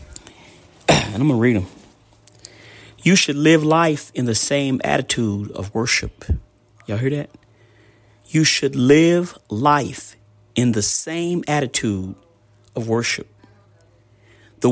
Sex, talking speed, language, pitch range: male, 120 wpm, English, 105-150 Hz